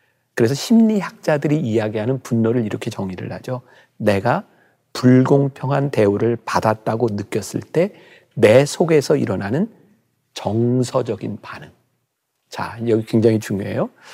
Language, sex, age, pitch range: Korean, male, 40-59, 110-155 Hz